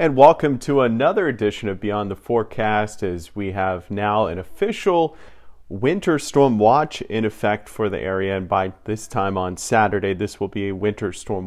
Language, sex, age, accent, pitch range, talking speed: English, male, 30-49, American, 100-125 Hz, 185 wpm